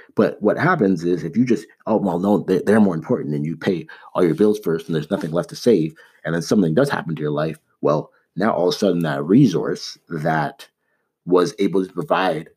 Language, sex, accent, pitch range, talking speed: English, male, American, 75-90 Hz, 230 wpm